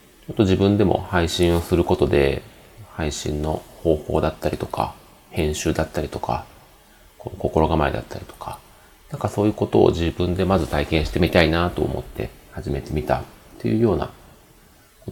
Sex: male